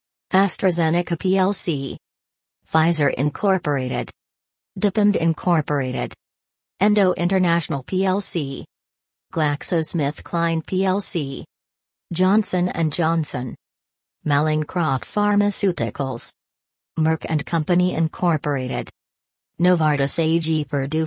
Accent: American